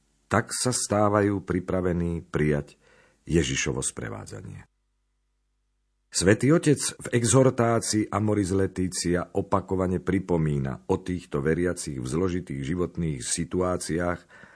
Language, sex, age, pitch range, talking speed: Slovak, male, 50-69, 80-110 Hz, 90 wpm